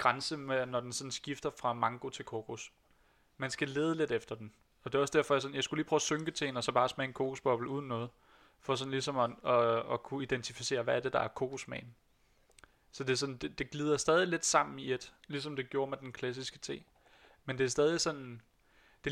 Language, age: Danish, 30-49